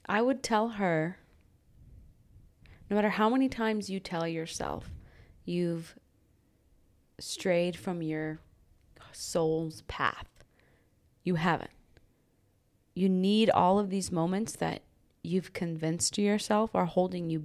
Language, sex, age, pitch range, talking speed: English, female, 20-39, 160-195 Hz, 115 wpm